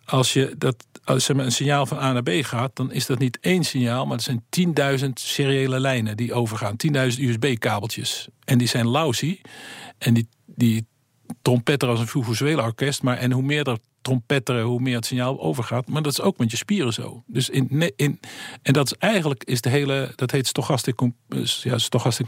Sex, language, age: male, Dutch, 50-69